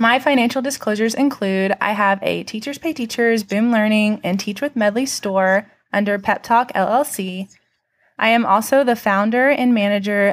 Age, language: 20-39, English